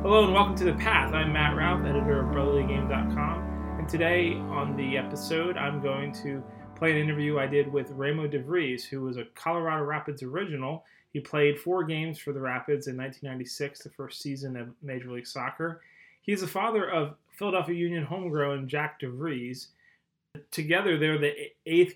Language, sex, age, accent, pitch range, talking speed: English, male, 20-39, American, 130-160 Hz, 170 wpm